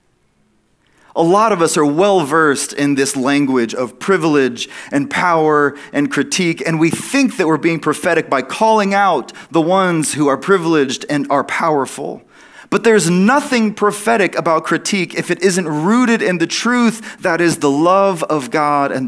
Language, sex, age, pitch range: English, male, 30-49, 130-185 Hz